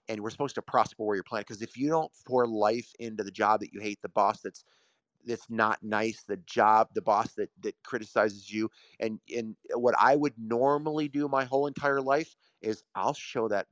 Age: 30-49